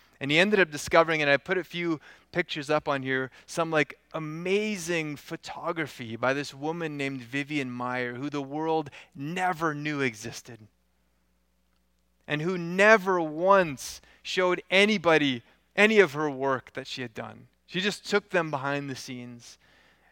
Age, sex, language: 20-39, male, English